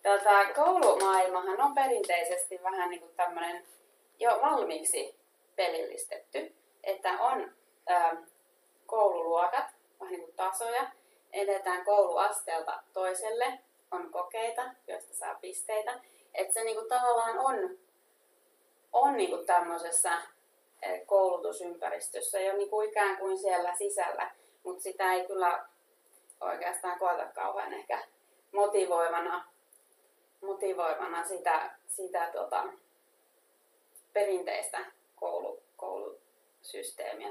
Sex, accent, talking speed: female, native, 95 wpm